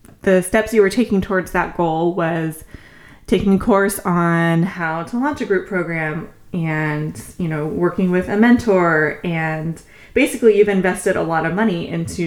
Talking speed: 170 wpm